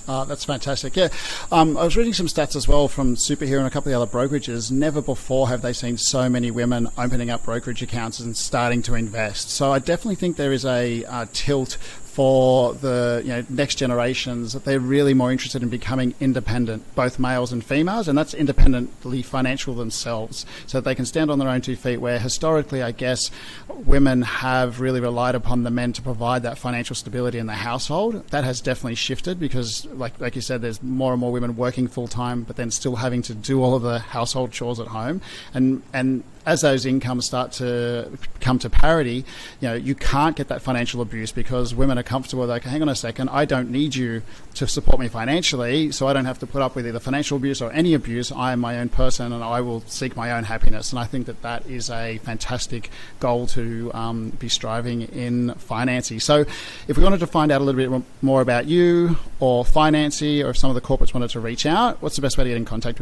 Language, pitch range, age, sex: English, 120-135 Hz, 40-59, male